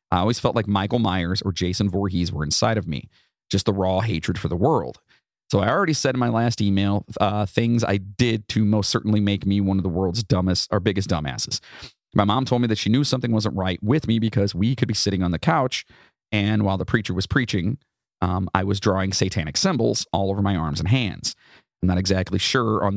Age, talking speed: 30-49, 230 wpm